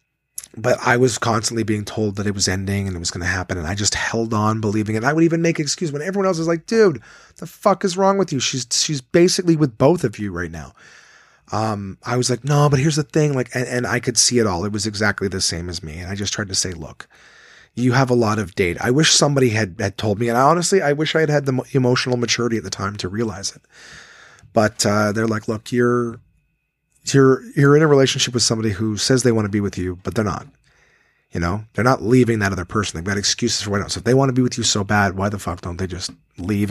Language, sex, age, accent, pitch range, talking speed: English, male, 30-49, American, 105-145 Hz, 270 wpm